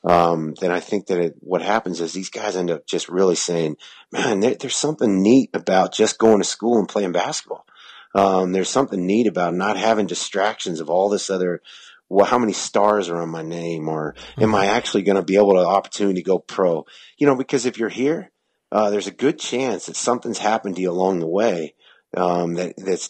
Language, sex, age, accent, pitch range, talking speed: English, male, 30-49, American, 90-105 Hz, 220 wpm